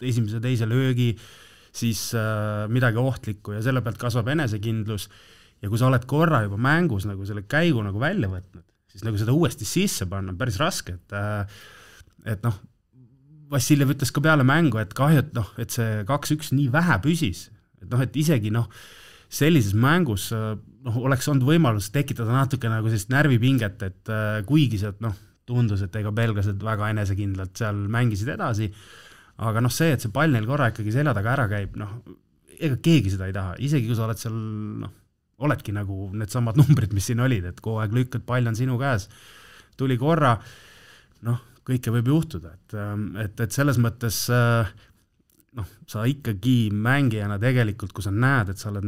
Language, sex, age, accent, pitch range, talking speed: English, male, 30-49, Finnish, 105-130 Hz, 175 wpm